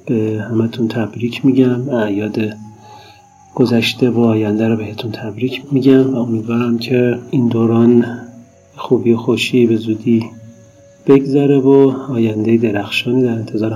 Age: 40-59